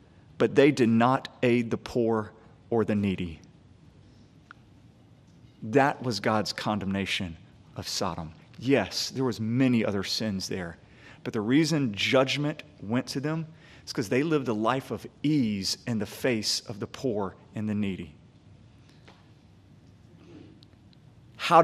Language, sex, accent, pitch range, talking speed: English, male, American, 110-140 Hz, 135 wpm